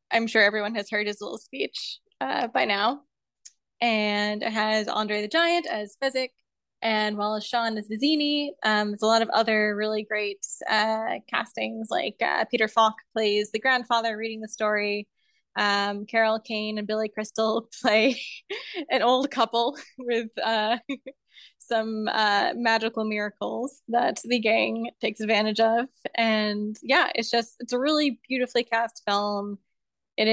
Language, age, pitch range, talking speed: English, 10-29, 210-235 Hz, 150 wpm